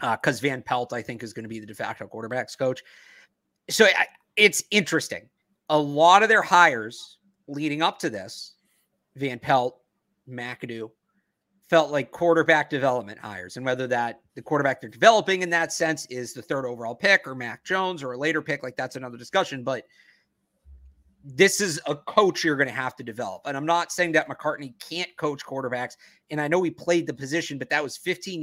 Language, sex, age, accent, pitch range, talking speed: English, male, 30-49, American, 125-170 Hz, 195 wpm